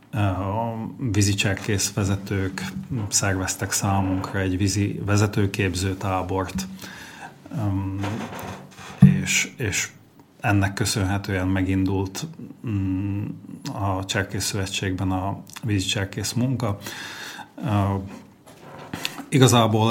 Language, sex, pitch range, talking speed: Slovak, male, 95-110 Hz, 55 wpm